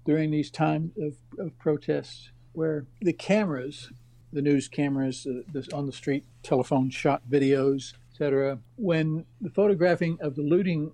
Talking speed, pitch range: 150 wpm, 140-165 Hz